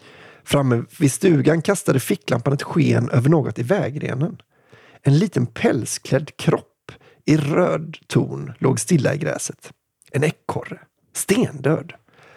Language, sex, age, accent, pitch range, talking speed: Swedish, male, 30-49, native, 125-160 Hz, 120 wpm